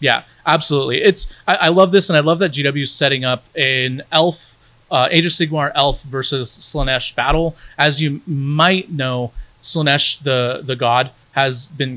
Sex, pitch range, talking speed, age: male, 125-155 Hz, 170 wpm, 30-49